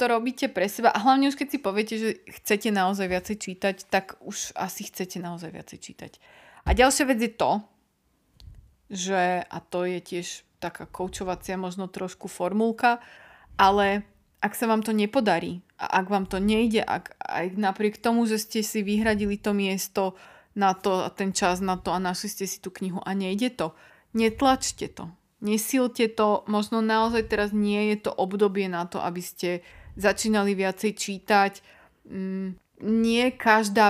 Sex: female